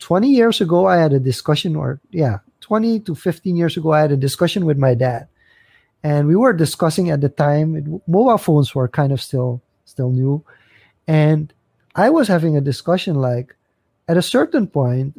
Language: English